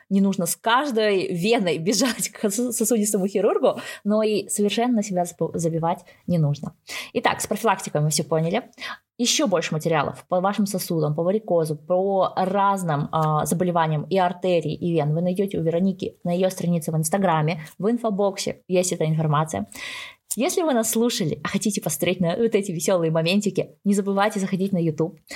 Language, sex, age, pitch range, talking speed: Russian, female, 20-39, 170-215 Hz, 165 wpm